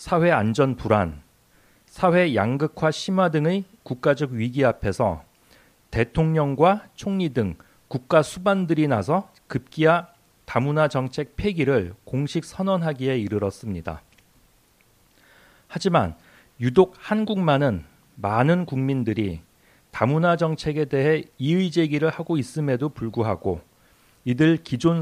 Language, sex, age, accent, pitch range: Korean, male, 40-59, native, 115-165 Hz